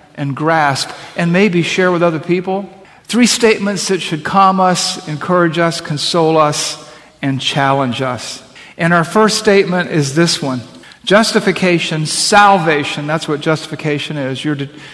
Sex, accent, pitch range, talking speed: male, American, 150-190 Hz, 145 wpm